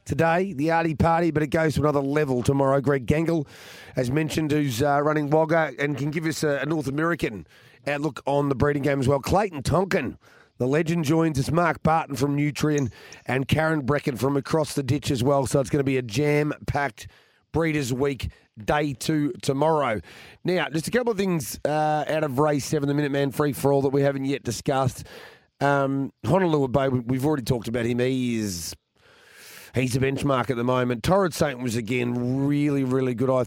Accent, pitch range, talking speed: Australian, 130-155 Hz, 200 wpm